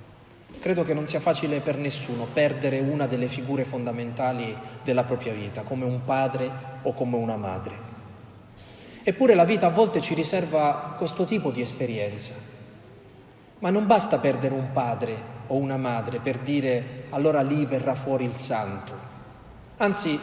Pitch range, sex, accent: 125-180 Hz, male, native